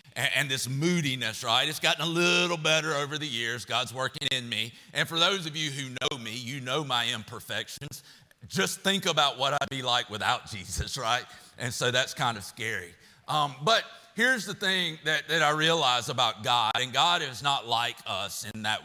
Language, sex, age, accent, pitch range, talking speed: English, male, 40-59, American, 125-180 Hz, 200 wpm